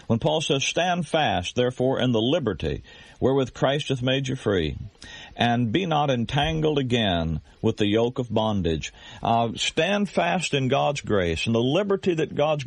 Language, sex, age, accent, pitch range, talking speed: English, male, 50-69, American, 110-145 Hz, 170 wpm